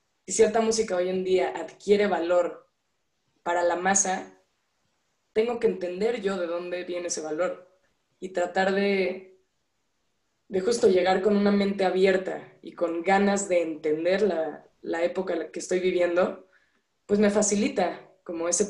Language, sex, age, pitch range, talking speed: Spanish, female, 20-39, 175-200 Hz, 155 wpm